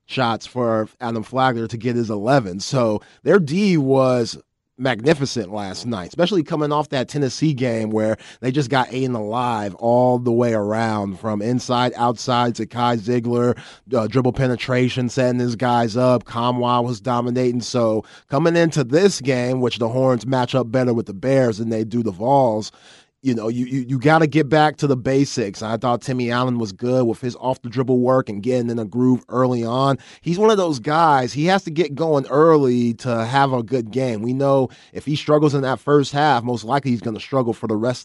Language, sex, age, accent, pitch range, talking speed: English, male, 30-49, American, 115-135 Hz, 205 wpm